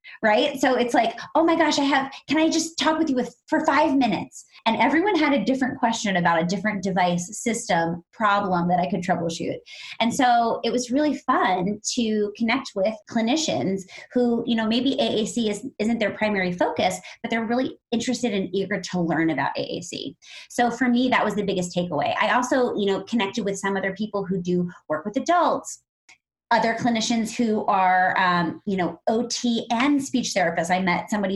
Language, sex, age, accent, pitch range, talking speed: English, female, 30-49, American, 180-240 Hz, 190 wpm